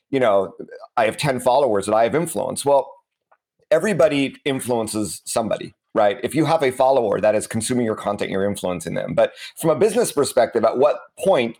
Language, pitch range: English, 115-155 Hz